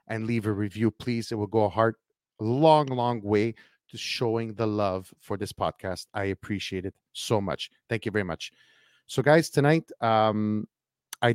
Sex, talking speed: male, 180 wpm